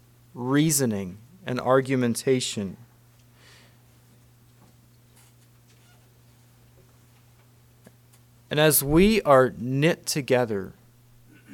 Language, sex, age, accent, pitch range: English, male, 30-49, American, 120-140 Hz